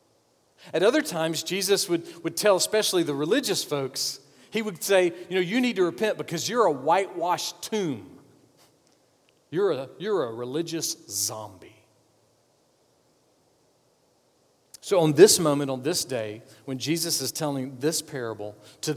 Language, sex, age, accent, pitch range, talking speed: English, male, 40-59, American, 135-180 Hz, 140 wpm